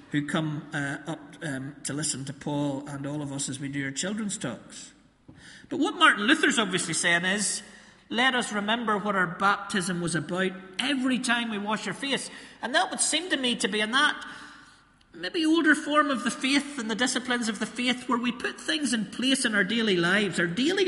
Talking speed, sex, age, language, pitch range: 215 wpm, male, 40-59, English, 150-235 Hz